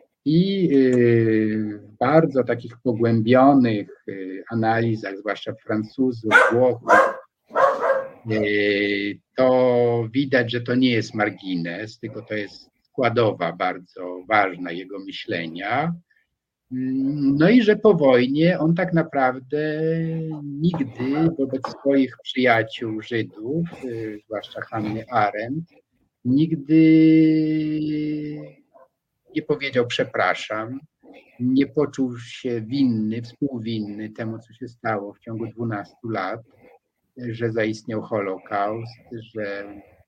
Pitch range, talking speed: 110-145 Hz, 100 wpm